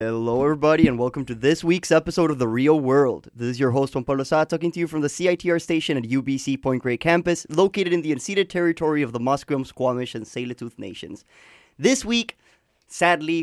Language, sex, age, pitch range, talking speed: English, male, 20-39, 125-160 Hz, 205 wpm